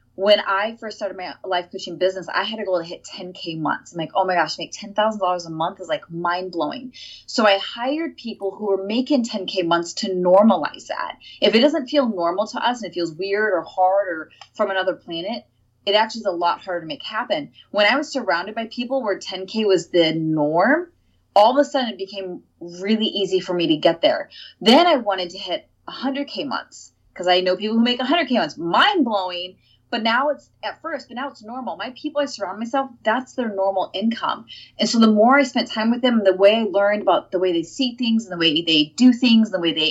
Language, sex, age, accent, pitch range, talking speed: English, female, 20-39, American, 185-245 Hz, 230 wpm